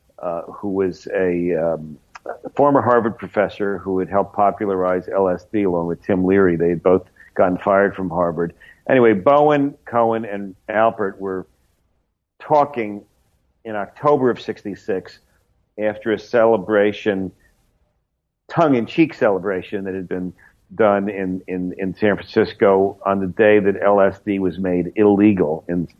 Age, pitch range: 50-69, 90-115 Hz